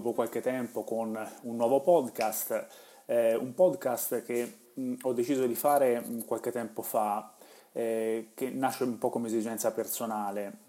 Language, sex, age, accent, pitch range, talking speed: Italian, male, 30-49, native, 110-120 Hz, 130 wpm